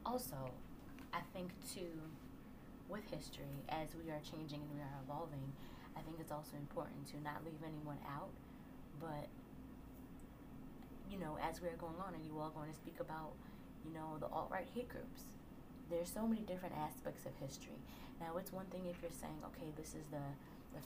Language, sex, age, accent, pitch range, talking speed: English, female, 20-39, American, 145-170 Hz, 180 wpm